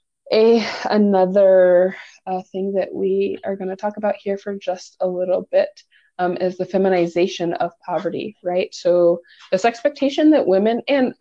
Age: 20-39